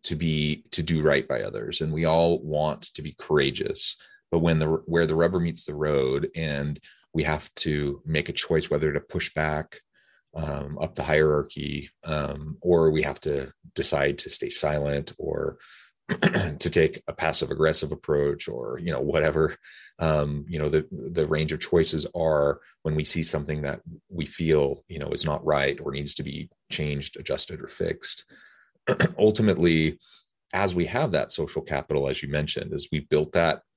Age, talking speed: 30-49, 180 wpm